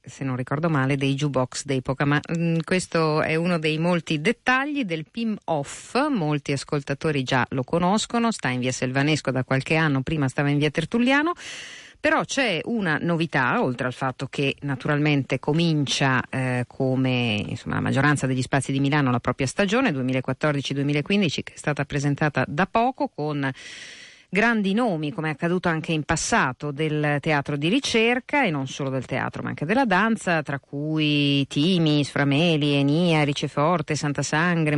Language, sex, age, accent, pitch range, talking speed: Italian, female, 50-69, native, 140-175 Hz, 160 wpm